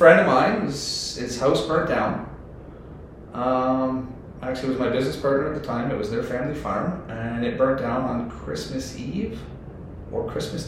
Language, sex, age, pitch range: English, male, 30-49, 120-145 Hz